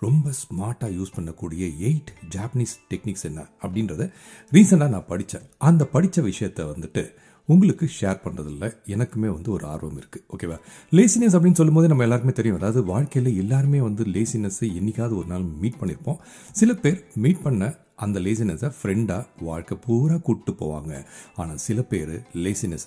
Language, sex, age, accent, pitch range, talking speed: Tamil, male, 40-59, native, 100-145 Hz, 135 wpm